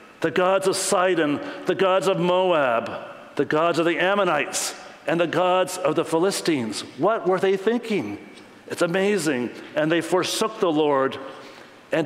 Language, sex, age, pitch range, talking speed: English, male, 60-79, 145-185 Hz, 155 wpm